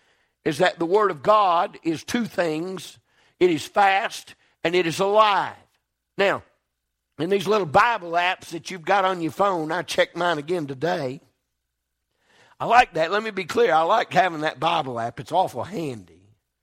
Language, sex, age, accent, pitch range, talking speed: English, male, 50-69, American, 155-205 Hz, 175 wpm